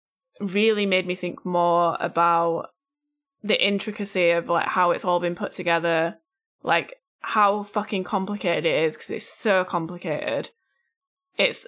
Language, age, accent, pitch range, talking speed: English, 10-29, British, 175-215 Hz, 140 wpm